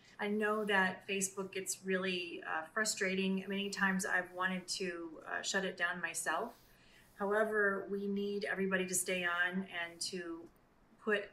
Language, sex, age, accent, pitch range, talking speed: English, female, 30-49, American, 170-195 Hz, 150 wpm